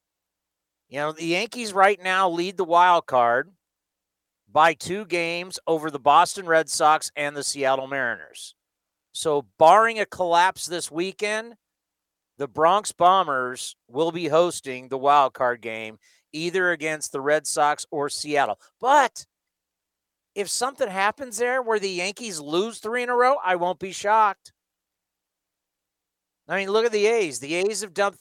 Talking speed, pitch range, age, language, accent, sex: 155 wpm, 145-200 Hz, 40-59, English, American, male